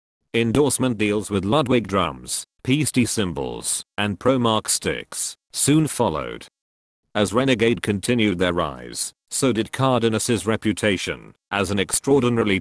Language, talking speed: English, 115 wpm